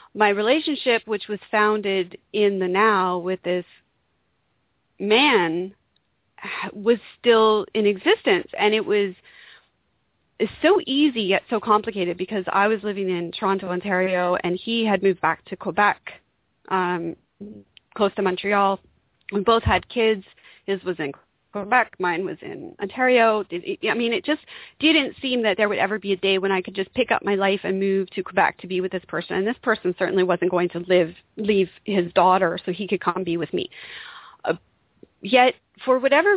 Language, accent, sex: English, American, female